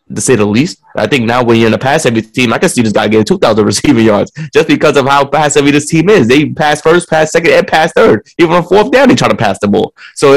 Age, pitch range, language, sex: 20-39, 110-130 Hz, English, male